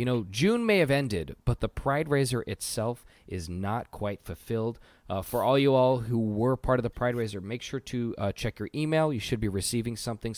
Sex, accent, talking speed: male, American, 225 wpm